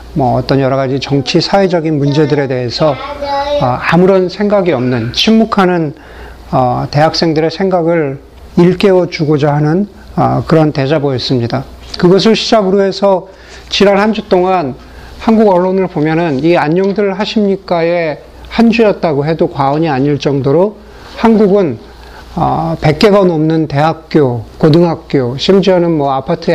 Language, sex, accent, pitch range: Korean, male, native, 150-195 Hz